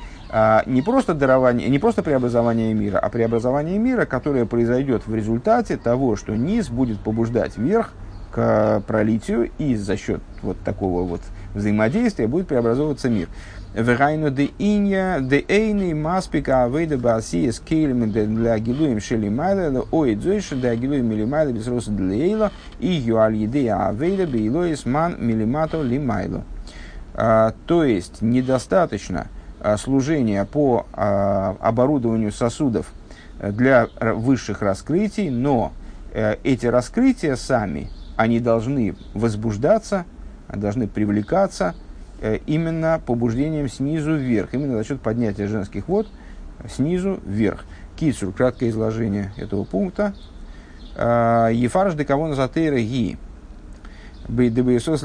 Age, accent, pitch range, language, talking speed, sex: 50-69, native, 105-145 Hz, Russian, 75 wpm, male